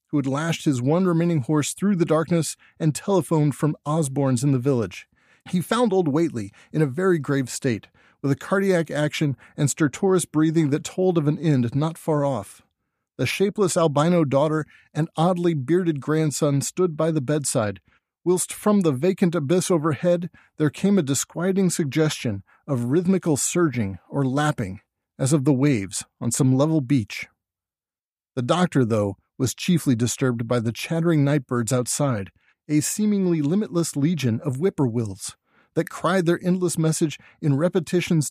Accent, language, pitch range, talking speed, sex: American, English, 135-175 Hz, 160 wpm, male